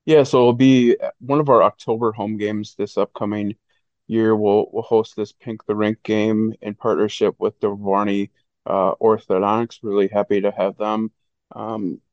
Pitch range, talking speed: 100-115 Hz, 165 wpm